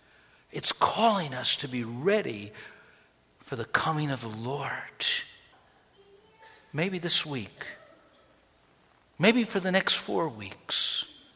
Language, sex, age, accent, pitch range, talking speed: English, male, 60-79, American, 130-200 Hz, 110 wpm